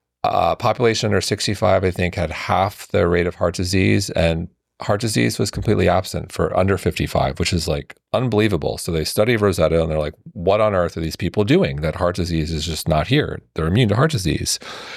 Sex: male